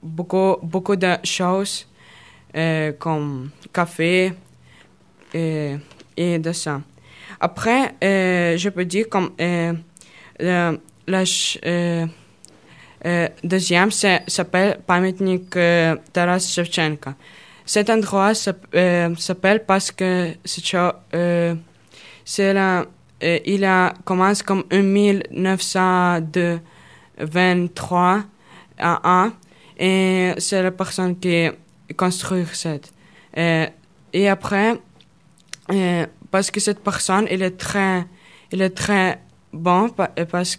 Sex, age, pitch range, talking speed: female, 20-39, 165-190 Hz, 100 wpm